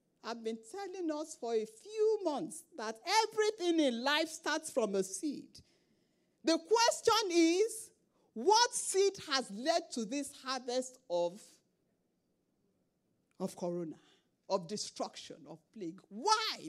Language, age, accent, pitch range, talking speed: English, 40-59, Nigerian, 195-310 Hz, 120 wpm